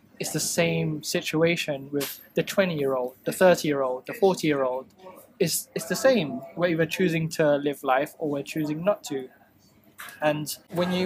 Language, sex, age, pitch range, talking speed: English, male, 20-39, 140-180 Hz, 155 wpm